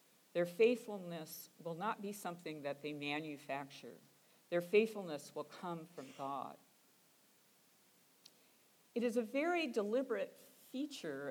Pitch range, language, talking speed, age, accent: 160-215 Hz, English, 110 wpm, 50-69, American